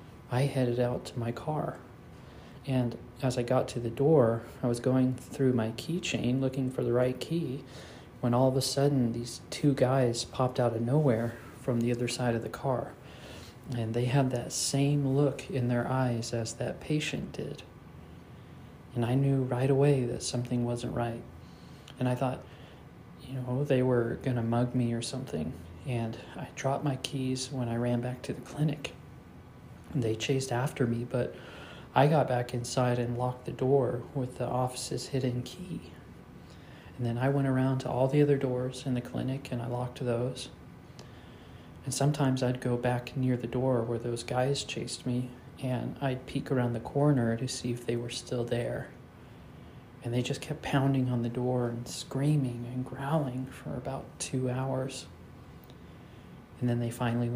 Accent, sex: American, male